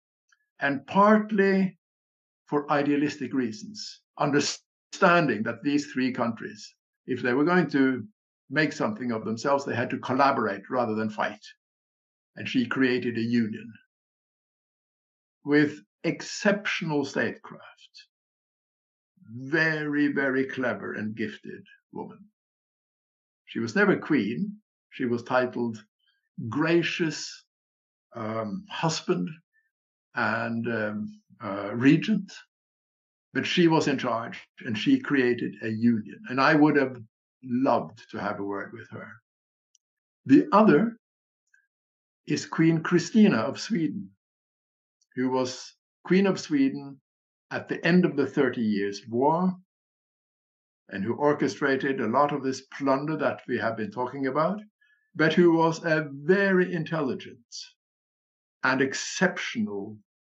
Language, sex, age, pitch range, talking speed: English, male, 60-79, 115-175 Hz, 115 wpm